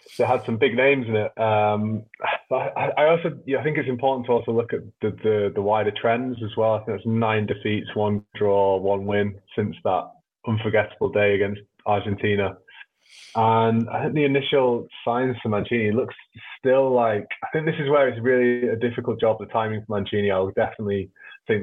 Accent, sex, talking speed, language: British, male, 195 wpm, English